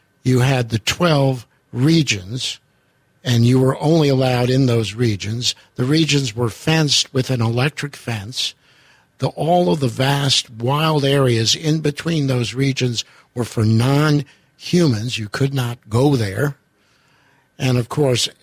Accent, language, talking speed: American, English, 140 wpm